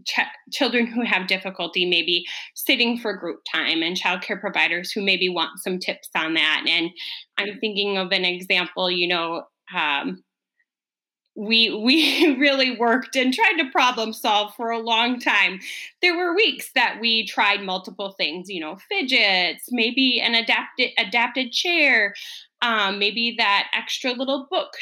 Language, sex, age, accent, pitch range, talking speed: English, female, 20-39, American, 195-260 Hz, 155 wpm